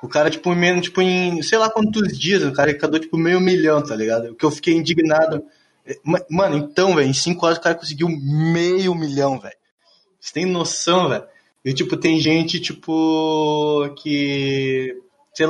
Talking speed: 180 wpm